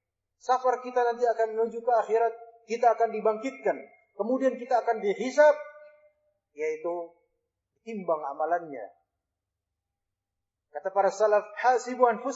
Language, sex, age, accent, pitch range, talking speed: Indonesian, male, 30-49, native, 180-250 Hz, 95 wpm